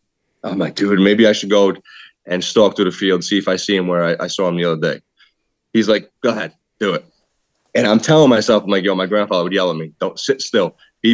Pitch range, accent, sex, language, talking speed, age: 95-110 Hz, American, male, English, 260 wpm, 20-39